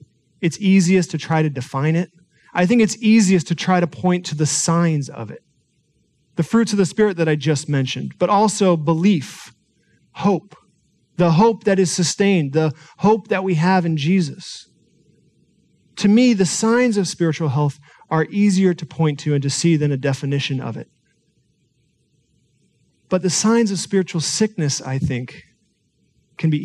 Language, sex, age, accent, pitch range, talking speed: English, male, 40-59, American, 150-190 Hz, 170 wpm